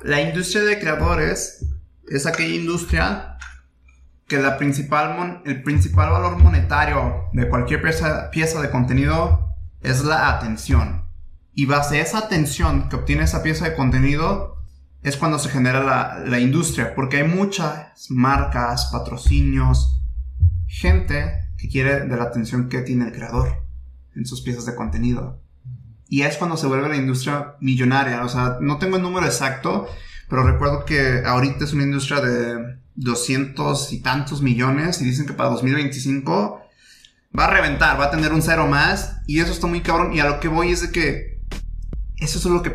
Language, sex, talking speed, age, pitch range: Spanish, male, 170 wpm, 20-39, 110-150 Hz